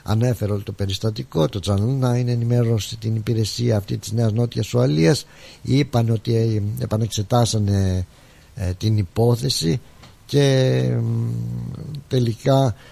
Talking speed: 105 wpm